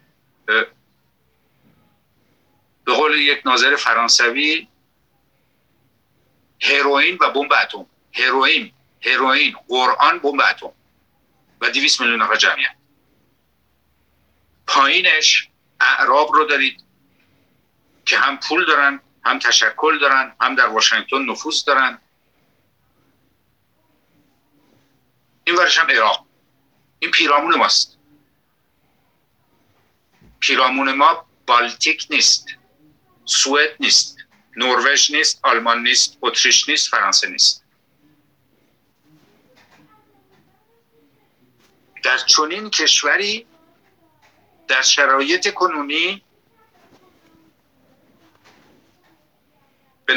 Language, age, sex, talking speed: Persian, 50-69, male, 70 wpm